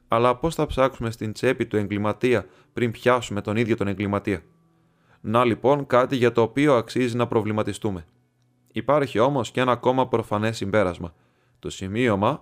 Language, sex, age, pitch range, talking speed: Greek, male, 20-39, 100-125 Hz, 155 wpm